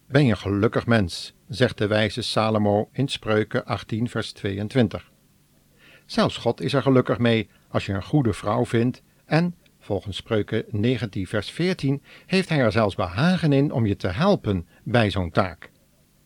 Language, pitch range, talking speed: Dutch, 105-145 Hz, 165 wpm